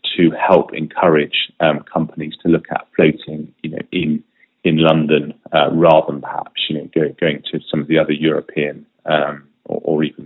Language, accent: English, British